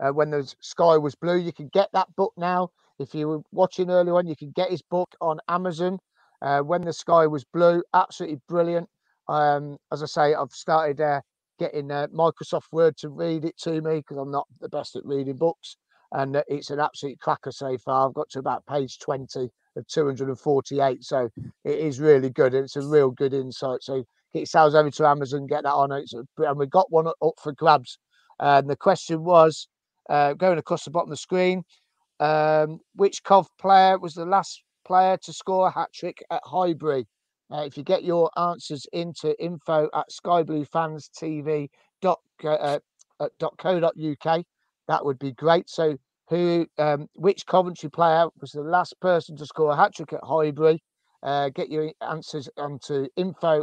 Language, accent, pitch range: English, British, 145-175 Hz